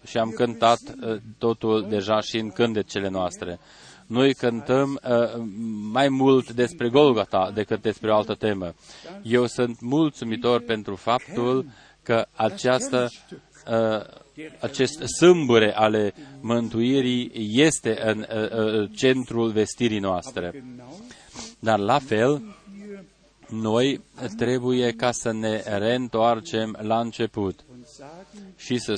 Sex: male